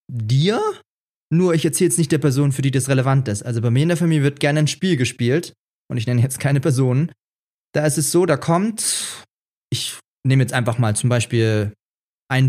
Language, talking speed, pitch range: German, 210 wpm, 135-175 Hz